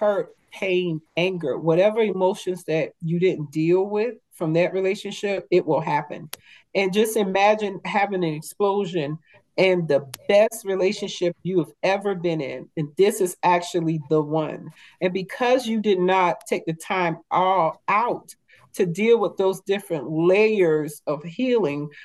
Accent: American